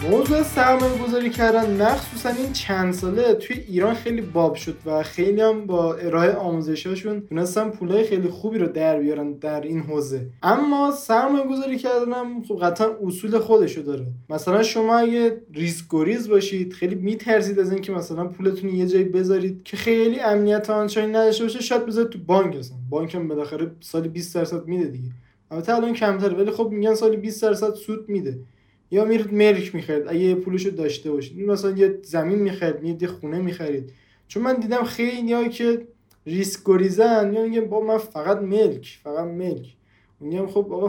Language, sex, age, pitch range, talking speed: Persian, male, 20-39, 160-220 Hz, 165 wpm